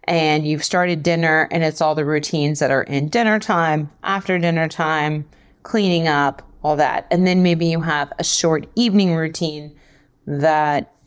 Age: 30-49